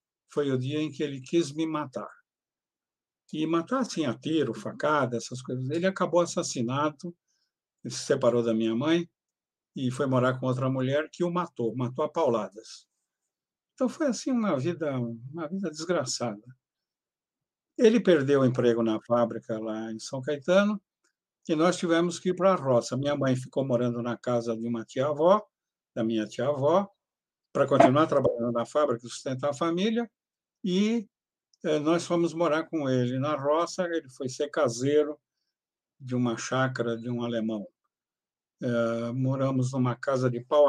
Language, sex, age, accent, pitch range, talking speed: Portuguese, male, 60-79, Brazilian, 125-160 Hz, 155 wpm